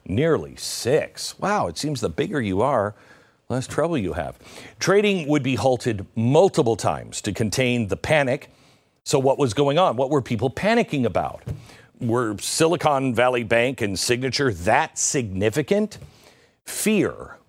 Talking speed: 145 wpm